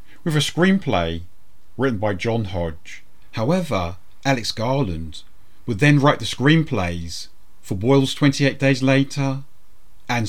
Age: 40-59